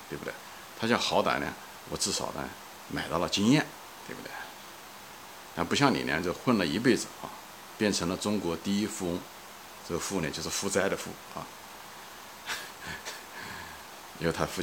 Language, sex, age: Chinese, male, 50-69